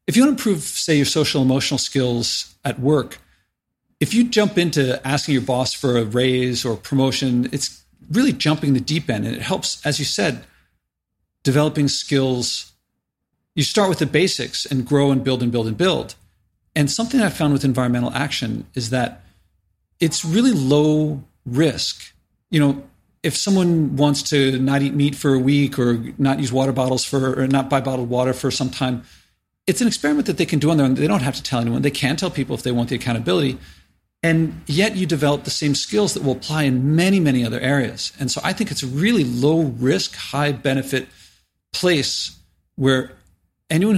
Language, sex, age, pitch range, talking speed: English, male, 40-59, 120-150 Hz, 195 wpm